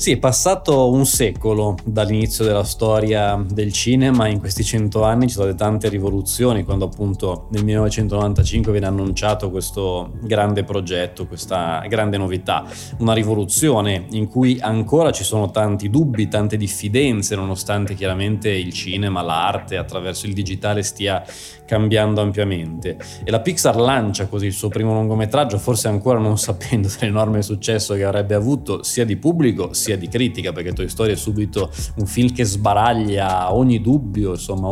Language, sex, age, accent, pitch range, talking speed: Italian, male, 20-39, native, 100-115 Hz, 155 wpm